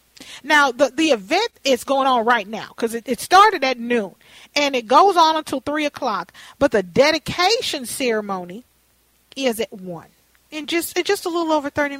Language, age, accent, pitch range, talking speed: English, 40-59, American, 240-325 Hz, 185 wpm